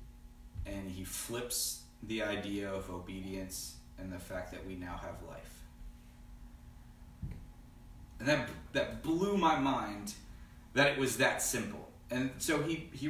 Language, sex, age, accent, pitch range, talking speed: English, male, 30-49, American, 85-130 Hz, 135 wpm